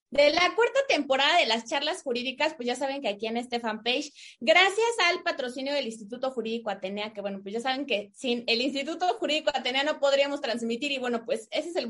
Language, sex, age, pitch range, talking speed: Spanish, female, 20-39, 225-295 Hz, 215 wpm